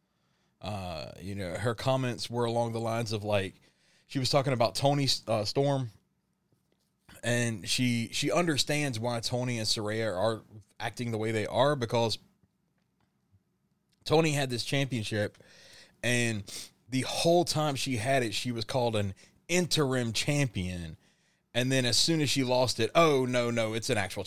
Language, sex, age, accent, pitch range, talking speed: English, male, 20-39, American, 105-125 Hz, 160 wpm